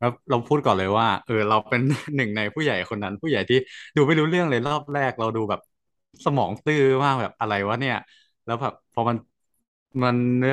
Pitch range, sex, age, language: 100-125 Hz, male, 20-39, Thai